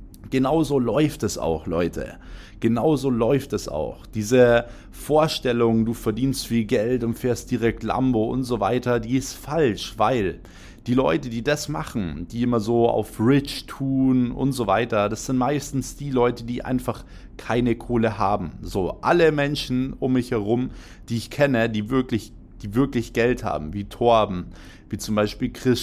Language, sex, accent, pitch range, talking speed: German, male, German, 110-130 Hz, 165 wpm